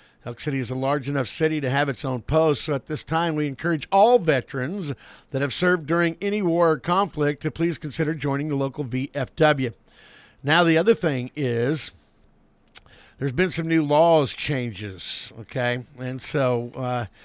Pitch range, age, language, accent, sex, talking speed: 125-150 Hz, 50-69, English, American, male, 175 wpm